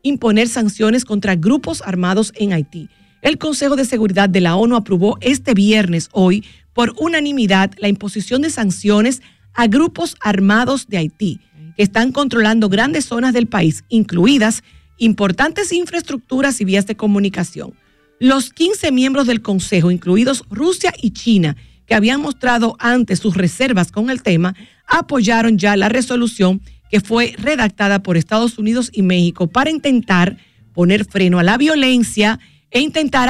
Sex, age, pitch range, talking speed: female, 50-69, 195-255 Hz, 150 wpm